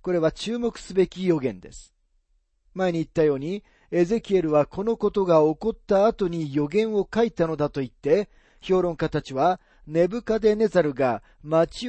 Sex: male